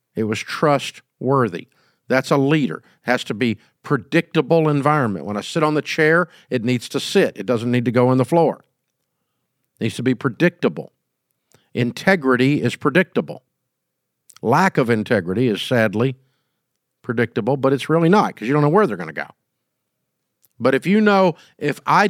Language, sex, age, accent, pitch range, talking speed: English, male, 50-69, American, 125-185 Hz, 170 wpm